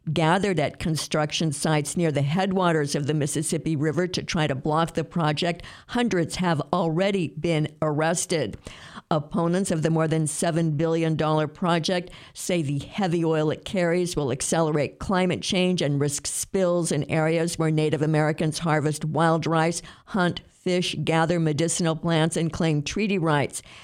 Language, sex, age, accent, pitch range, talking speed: English, female, 50-69, American, 155-185 Hz, 150 wpm